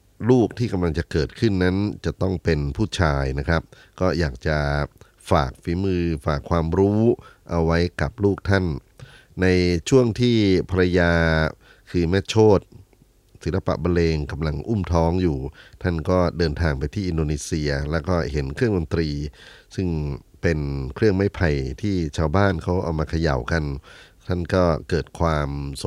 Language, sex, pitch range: Thai, male, 75-95 Hz